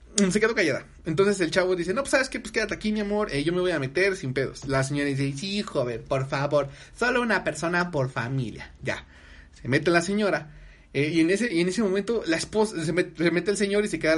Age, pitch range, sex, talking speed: 30-49, 145-215 Hz, male, 255 wpm